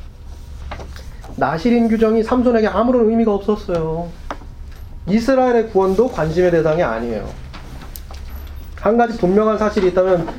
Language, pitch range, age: Korean, 145-230 Hz, 30-49